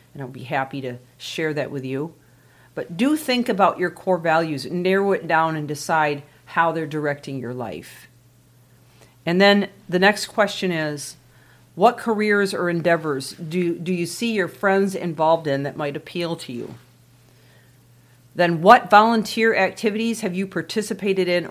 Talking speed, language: 160 wpm, English